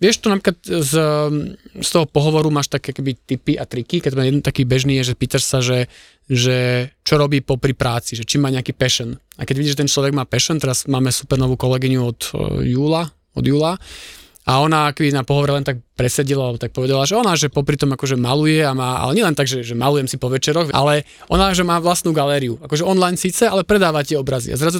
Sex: male